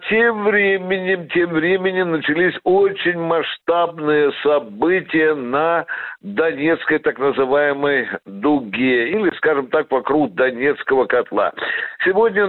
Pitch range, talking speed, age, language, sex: 140-185 Hz, 95 wpm, 60-79, Russian, male